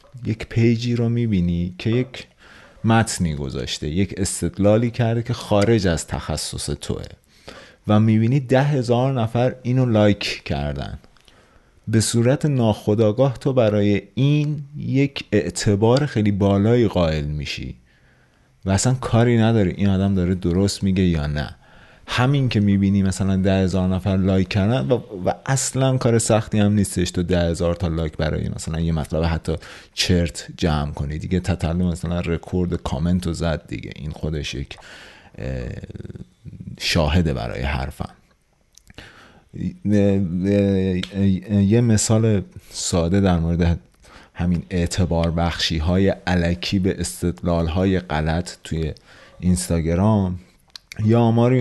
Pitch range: 85-110 Hz